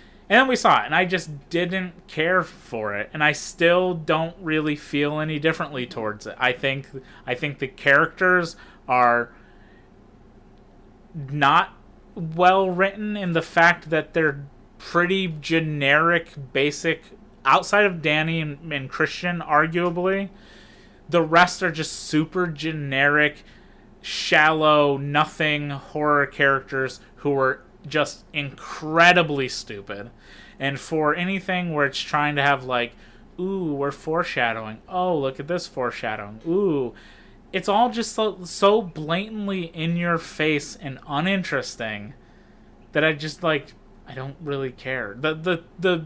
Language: English